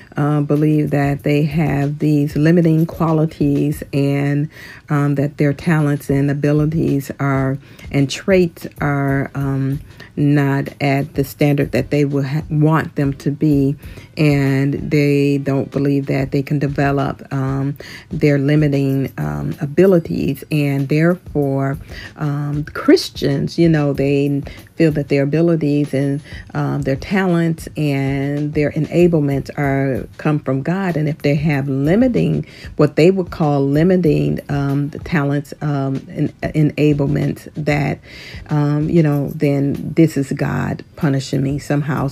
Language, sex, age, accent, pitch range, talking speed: English, female, 40-59, American, 140-150 Hz, 135 wpm